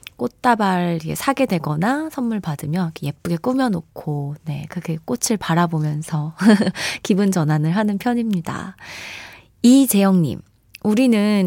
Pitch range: 180-255 Hz